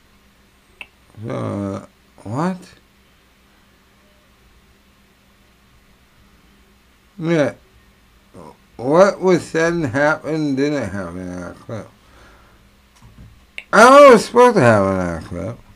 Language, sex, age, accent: English, male, 60-79, American